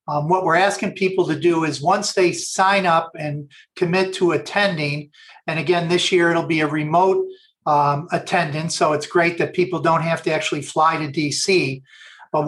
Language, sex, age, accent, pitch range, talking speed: English, male, 50-69, American, 155-185 Hz, 190 wpm